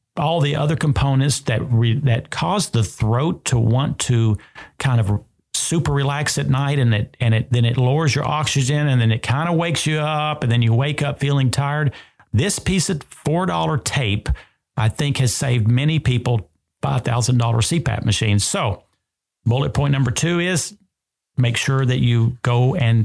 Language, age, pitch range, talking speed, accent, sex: English, 40-59, 115-150 Hz, 180 wpm, American, male